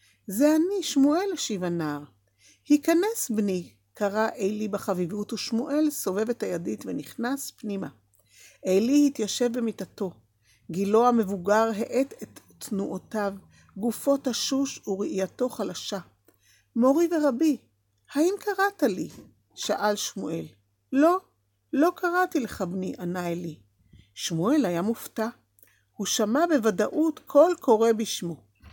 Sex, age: female, 50-69